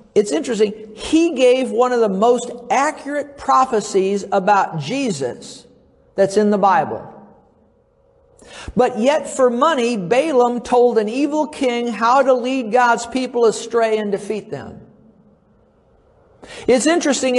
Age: 50-69